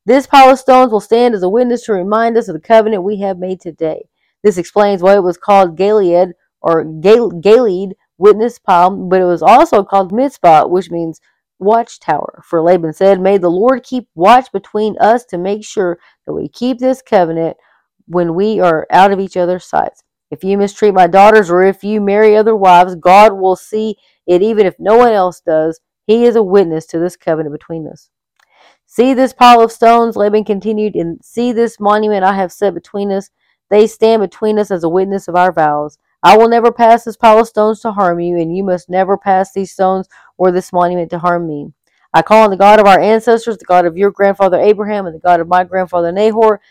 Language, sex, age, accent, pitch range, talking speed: English, female, 40-59, American, 180-220 Hz, 210 wpm